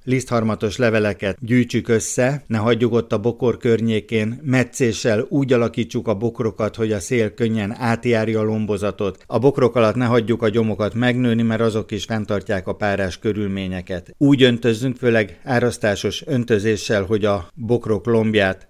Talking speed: 150 wpm